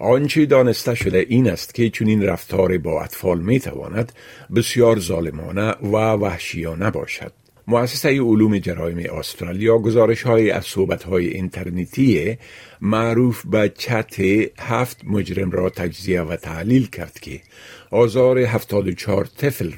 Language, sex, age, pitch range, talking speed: Persian, male, 50-69, 90-120 Hz, 130 wpm